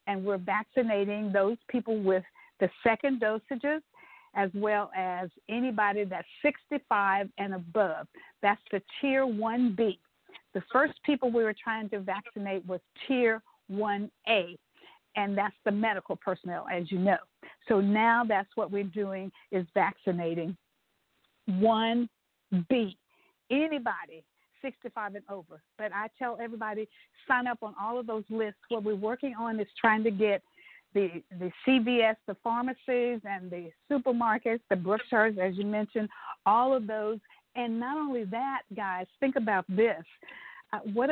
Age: 50-69